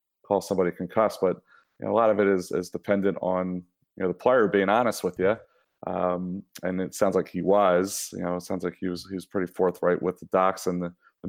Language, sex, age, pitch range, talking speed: English, male, 30-49, 90-100 Hz, 245 wpm